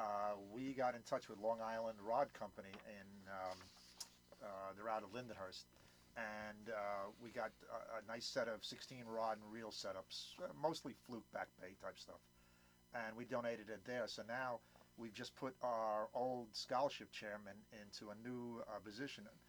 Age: 40-59